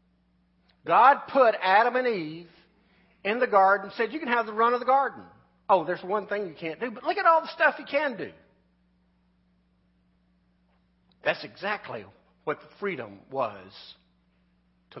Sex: male